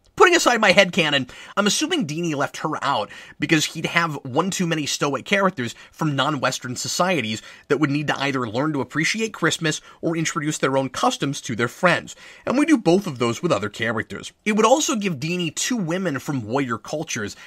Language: English